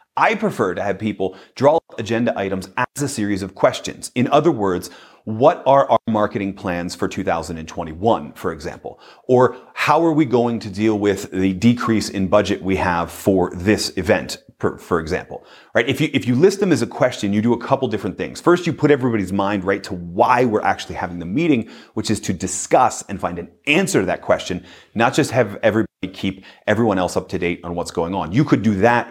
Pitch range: 95-130 Hz